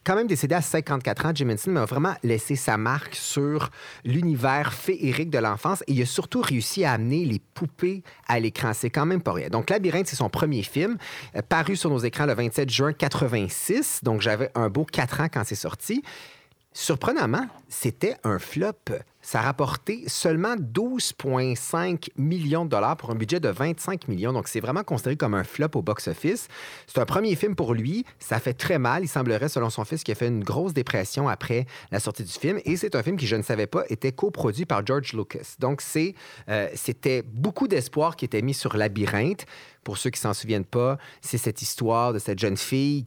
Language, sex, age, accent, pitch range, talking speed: French, male, 40-59, Canadian, 115-155 Hz, 210 wpm